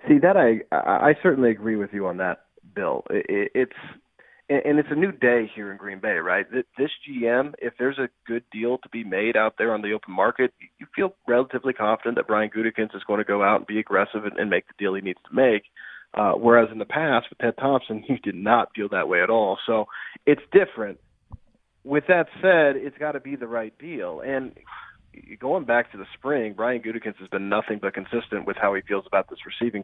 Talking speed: 220 wpm